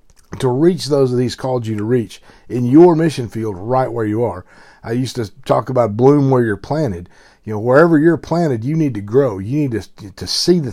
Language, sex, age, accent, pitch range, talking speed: English, male, 50-69, American, 105-145 Hz, 230 wpm